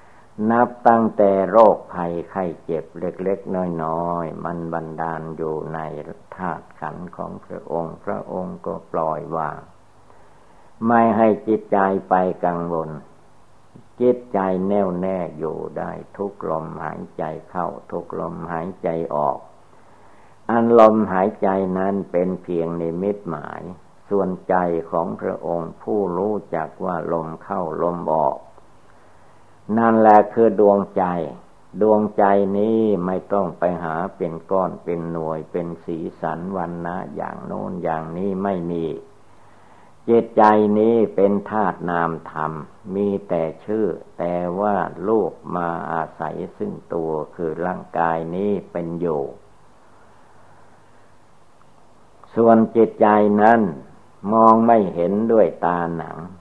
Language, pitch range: Thai, 85-105 Hz